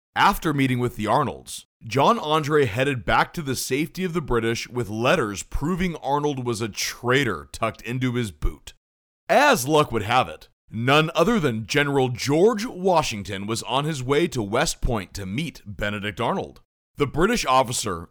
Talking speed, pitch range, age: 170 wpm, 110-160 Hz, 40-59